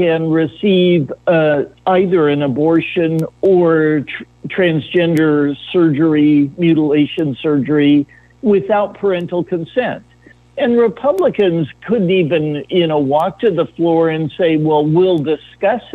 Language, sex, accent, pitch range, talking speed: English, male, American, 150-195 Hz, 110 wpm